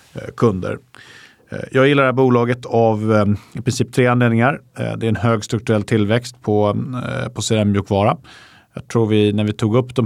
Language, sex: Swedish, male